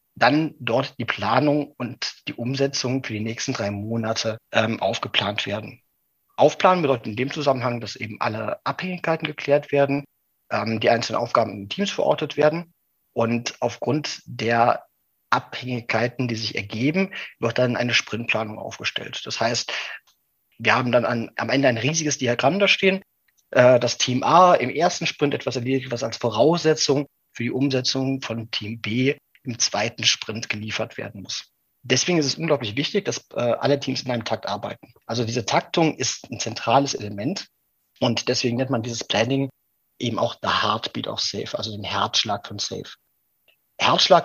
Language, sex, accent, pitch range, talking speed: German, male, German, 115-145 Hz, 165 wpm